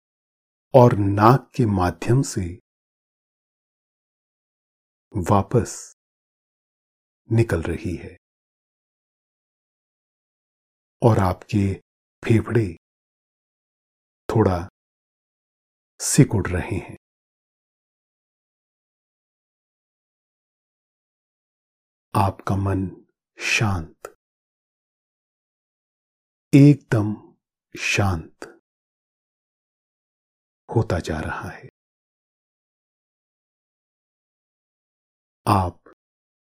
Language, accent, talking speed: Hindi, native, 45 wpm